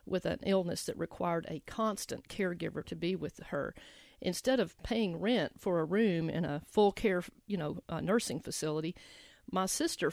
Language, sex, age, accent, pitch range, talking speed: English, female, 50-69, American, 170-225 Hz, 180 wpm